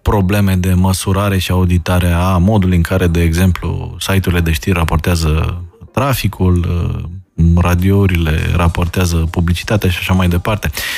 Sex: male